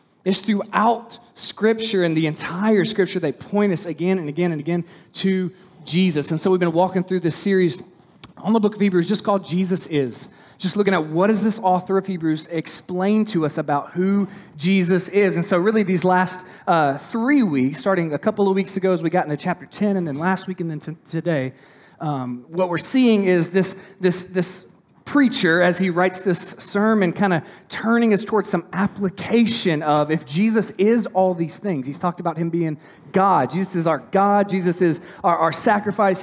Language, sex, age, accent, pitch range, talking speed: English, male, 30-49, American, 175-210 Hz, 200 wpm